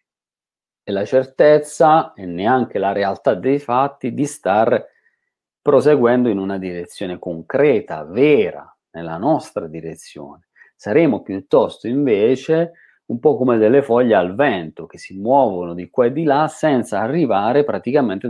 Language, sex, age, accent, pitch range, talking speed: Italian, male, 40-59, native, 95-135 Hz, 135 wpm